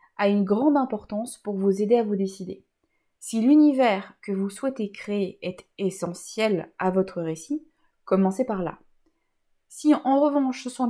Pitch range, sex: 200-270 Hz, female